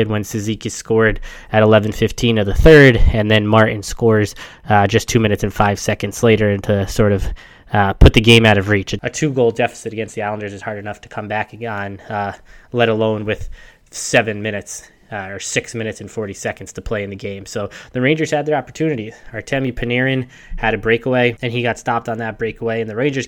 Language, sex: English, male